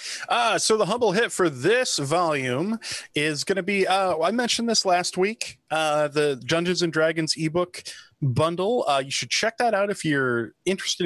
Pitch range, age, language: 130-175 Hz, 20-39, English